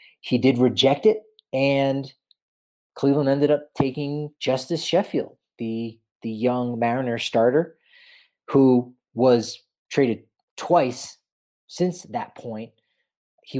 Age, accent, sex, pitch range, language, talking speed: 30-49, American, male, 115-140 Hz, English, 105 wpm